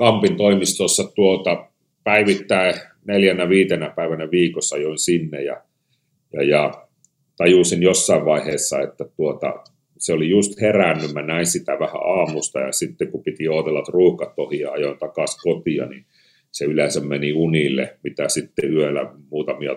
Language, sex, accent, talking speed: Finnish, male, native, 145 wpm